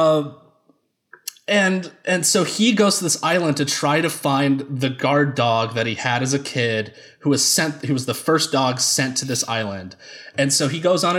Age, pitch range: 20-39, 115-160 Hz